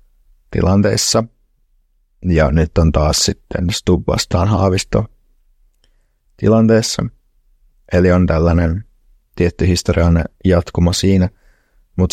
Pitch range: 85-100 Hz